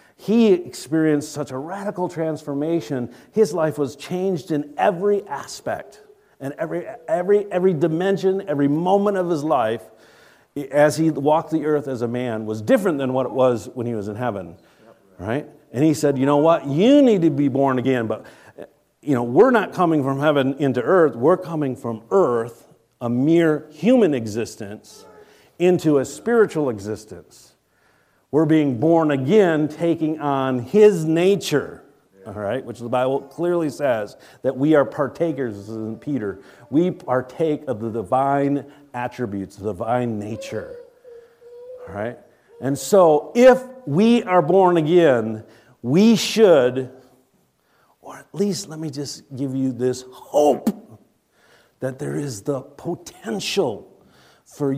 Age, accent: 50-69, American